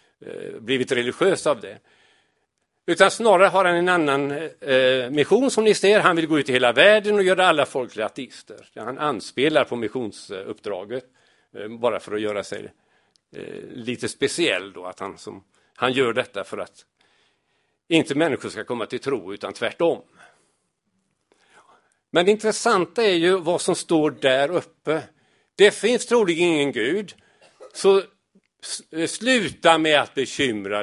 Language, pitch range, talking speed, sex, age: Swedish, 140-200 Hz, 145 wpm, male, 50-69